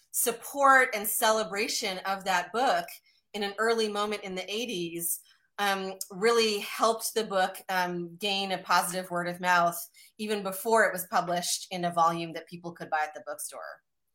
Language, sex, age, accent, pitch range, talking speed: English, female, 30-49, American, 190-225 Hz, 170 wpm